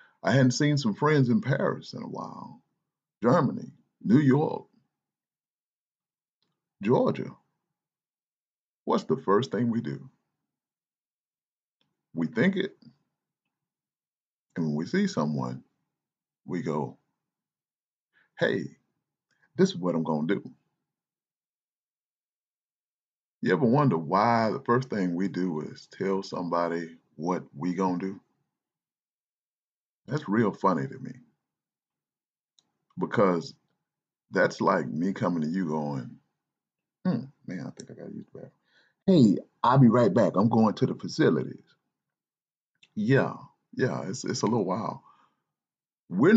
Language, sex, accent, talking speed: English, male, American, 120 wpm